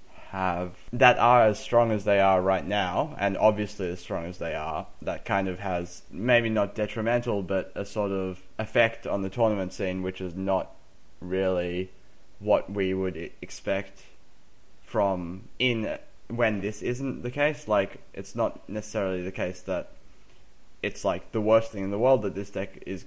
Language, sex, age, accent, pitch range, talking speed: English, male, 20-39, Australian, 95-110 Hz, 175 wpm